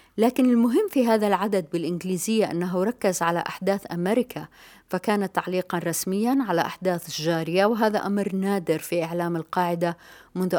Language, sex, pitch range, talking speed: Arabic, female, 170-195 Hz, 135 wpm